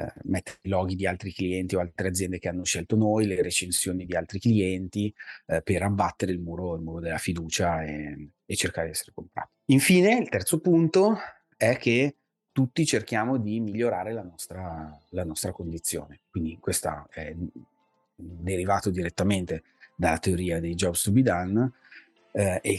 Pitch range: 85-105 Hz